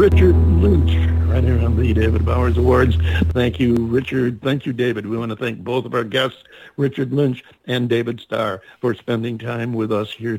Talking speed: 195 wpm